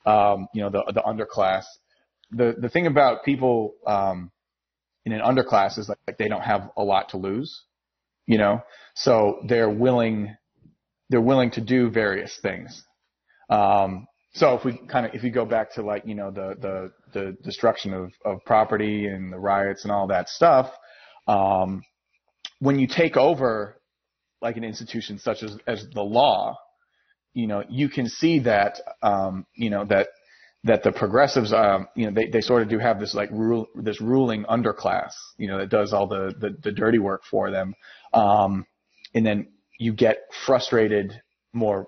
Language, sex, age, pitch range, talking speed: English, male, 30-49, 100-120 Hz, 180 wpm